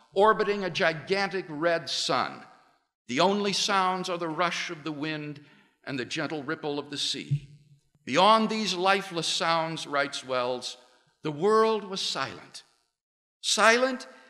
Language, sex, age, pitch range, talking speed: English, male, 60-79, 155-210 Hz, 135 wpm